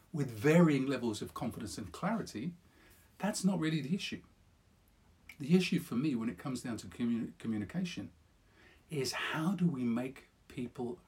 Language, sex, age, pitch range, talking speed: English, male, 50-69, 105-155 Hz, 150 wpm